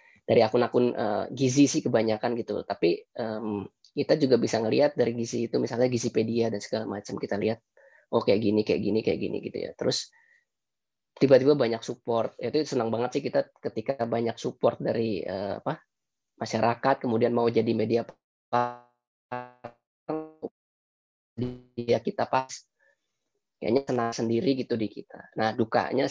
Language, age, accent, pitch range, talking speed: Indonesian, 20-39, native, 115-135 Hz, 145 wpm